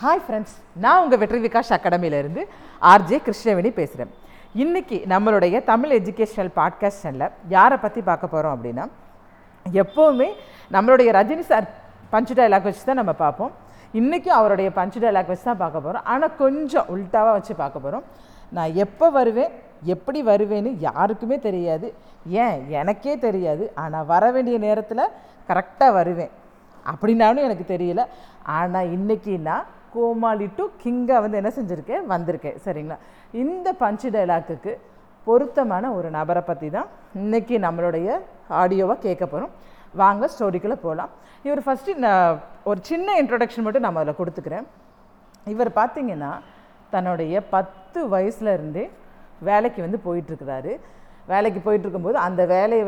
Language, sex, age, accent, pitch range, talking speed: Tamil, female, 40-59, native, 180-235 Hz, 125 wpm